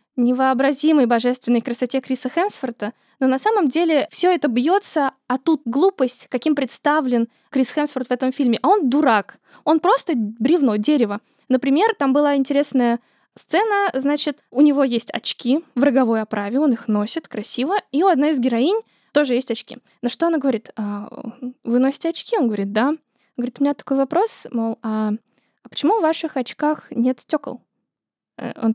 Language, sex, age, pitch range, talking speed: Russian, female, 10-29, 235-295 Hz, 165 wpm